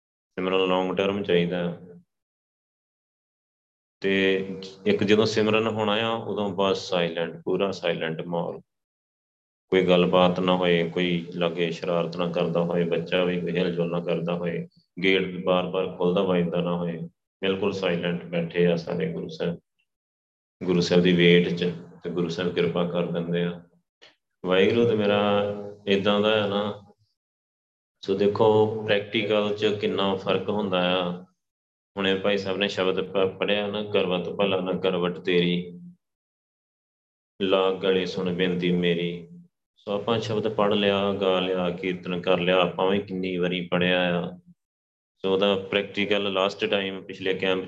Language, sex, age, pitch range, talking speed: Punjabi, male, 30-49, 85-100 Hz, 130 wpm